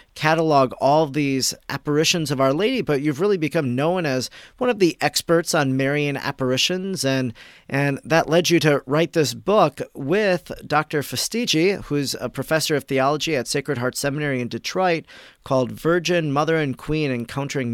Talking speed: 165 wpm